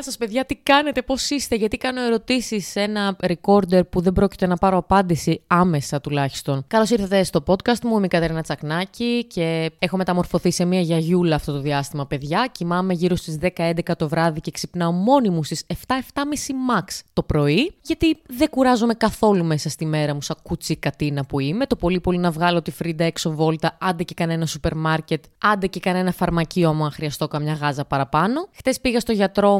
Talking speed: 195 wpm